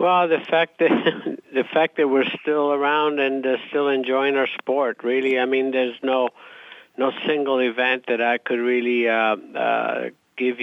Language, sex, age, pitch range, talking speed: English, male, 50-69, 105-125 Hz, 175 wpm